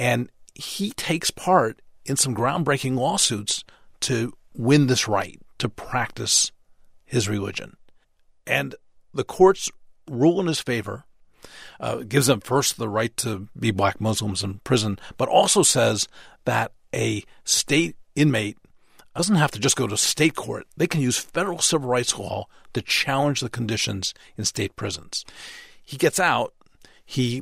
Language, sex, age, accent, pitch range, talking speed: English, male, 50-69, American, 105-135 Hz, 150 wpm